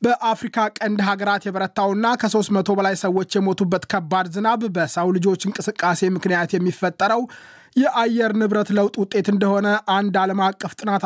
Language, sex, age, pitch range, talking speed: Amharic, male, 20-39, 170-200 Hz, 130 wpm